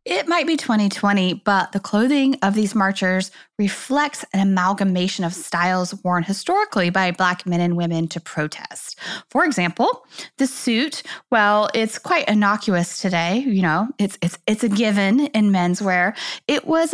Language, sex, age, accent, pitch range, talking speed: English, female, 20-39, American, 180-255 Hz, 155 wpm